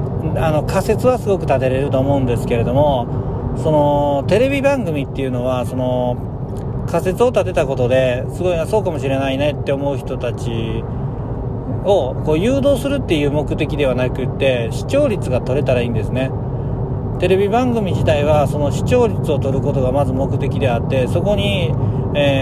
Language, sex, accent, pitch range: Japanese, male, native, 125-145 Hz